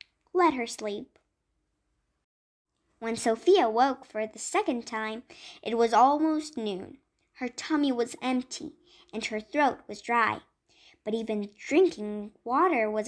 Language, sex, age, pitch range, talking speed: Persian, male, 10-29, 225-330 Hz, 130 wpm